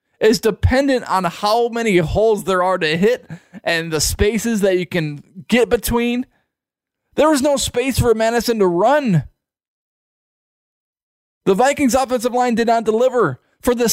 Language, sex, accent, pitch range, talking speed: English, male, American, 170-235 Hz, 150 wpm